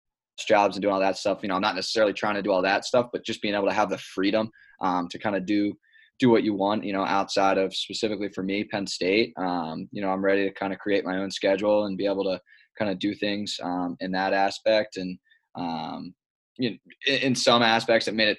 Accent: American